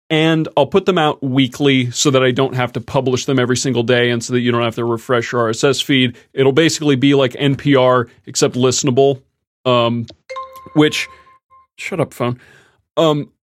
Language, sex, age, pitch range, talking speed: English, male, 30-49, 120-150 Hz, 180 wpm